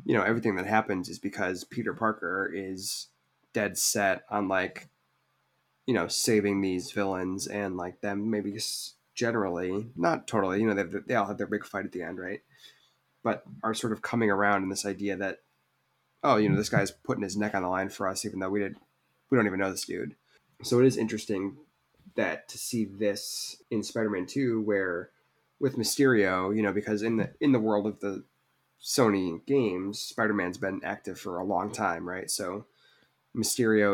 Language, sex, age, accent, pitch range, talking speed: English, male, 20-39, American, 95-110 Hz, 195 wpm